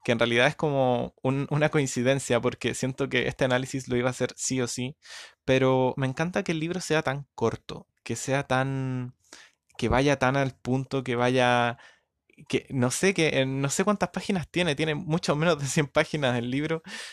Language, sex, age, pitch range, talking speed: Spanish, male, 20-39, 120-155 Hz, 195 wpm